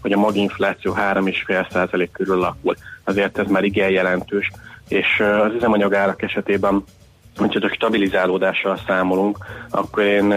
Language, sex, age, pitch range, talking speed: Hungarian, male, 30-49, 95-105 Hz, 125 wpm